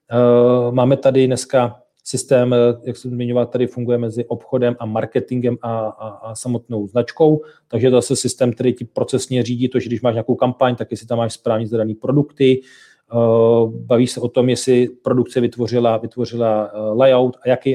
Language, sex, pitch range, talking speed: Czech, male, 115-125 Hz, 170 wpm